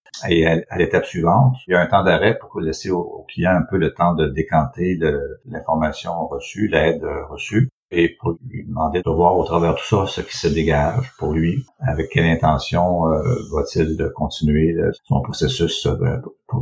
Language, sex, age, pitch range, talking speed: French, male, 60-79, 75-90 Hz, 190 wpm